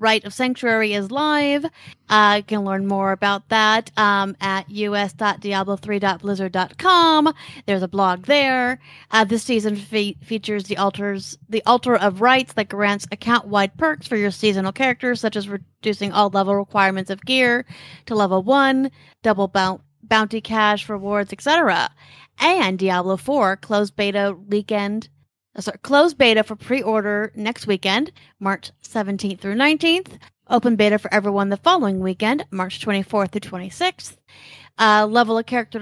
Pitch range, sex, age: 200-240 Hz, female, 30-49